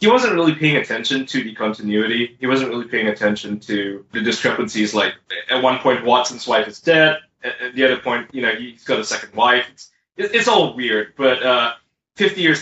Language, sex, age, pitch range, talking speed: English, male, 20-39, 120-150 Hz, 205 wpm